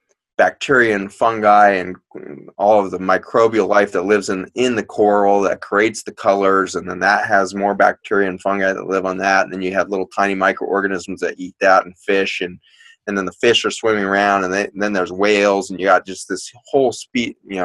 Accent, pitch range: American, 90-105 Hz